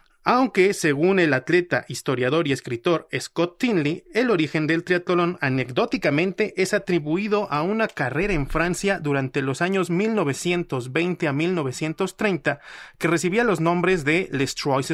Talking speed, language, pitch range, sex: 135 wpm, Spanish, 145-190 Hz, male